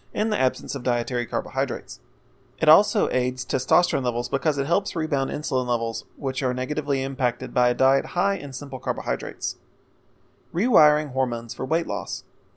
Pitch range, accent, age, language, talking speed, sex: 125-165 Hz, American, 30-49, English, 155 wpm, male